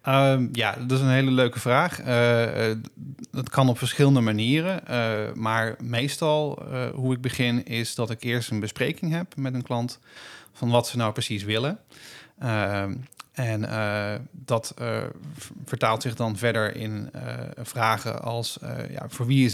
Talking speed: 165 wpm